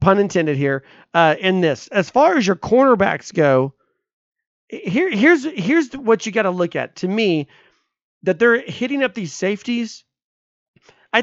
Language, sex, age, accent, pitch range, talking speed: English, male, 40-59, American, 170-215 Hz, 160 wpm